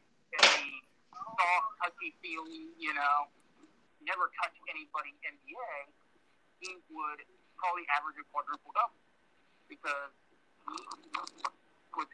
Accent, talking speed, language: American, 90 wpm, English